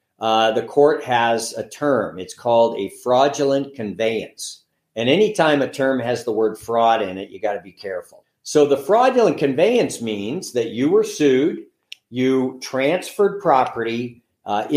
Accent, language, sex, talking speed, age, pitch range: American, English, male, 160 wpm, 50-69, 115-155 Hz